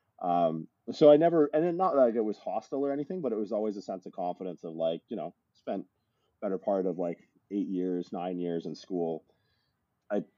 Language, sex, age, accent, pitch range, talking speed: English, male, 30-49, American, 85-105 Hz, 210 wpm